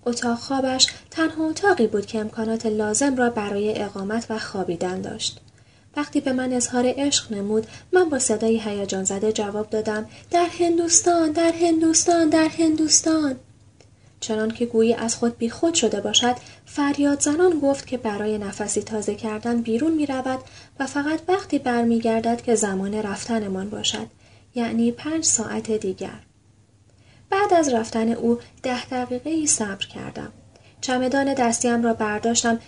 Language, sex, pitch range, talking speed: Persian, female, 215-275 Hz, 145 wpm